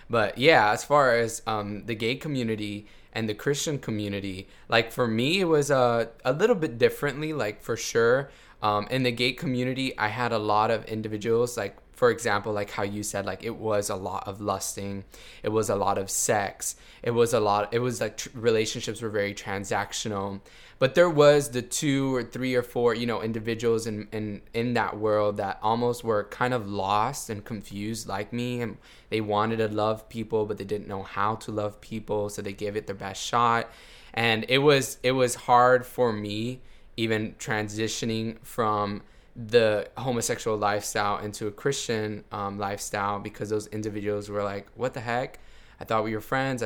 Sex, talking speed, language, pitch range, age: male, 190 wpm, English, 105-120 Hz, 10-29